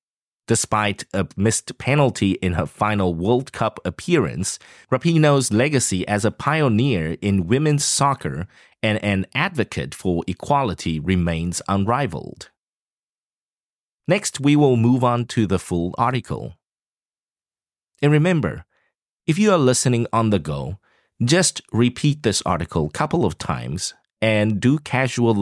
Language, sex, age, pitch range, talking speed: English, male, 30-49, 100-140 Hz, 130 wpm